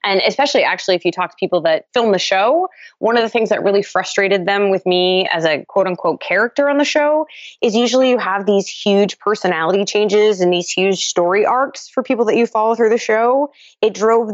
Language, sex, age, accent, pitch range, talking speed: English, female, 20-39, American, 160-205 Hz, 220 wpm